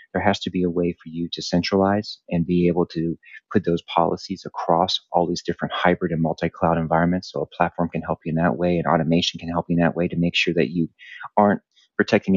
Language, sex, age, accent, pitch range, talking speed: English, male, 30-49, American, 80-95 Hz, 240 wpm